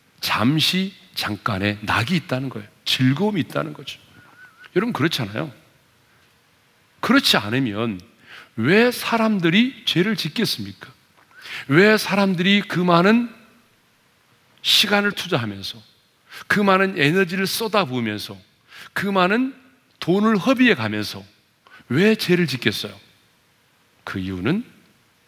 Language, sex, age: Korean, male, 40-59